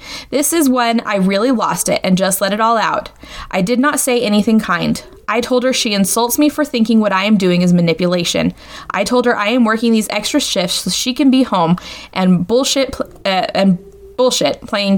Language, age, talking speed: English, 20-39, 210 wpm